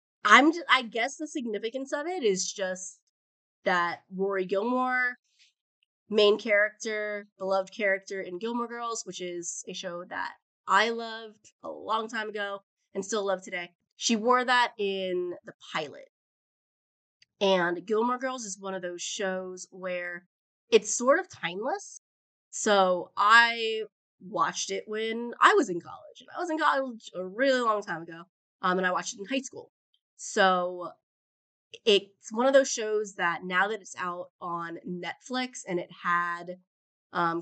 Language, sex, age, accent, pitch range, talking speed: English, female, 20-39, American, 180-235 Hz, 155 wpm